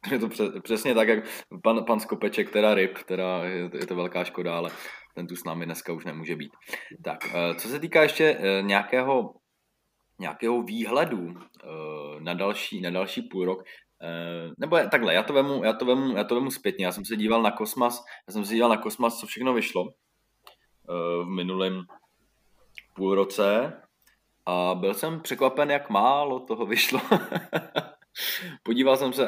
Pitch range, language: 95-115 Hz, Czech